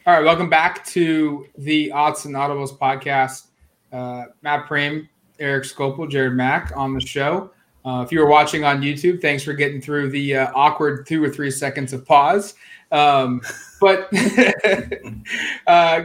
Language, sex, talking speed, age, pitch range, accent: English, male, 155 wpm, 20-39, 140-175 Hz, American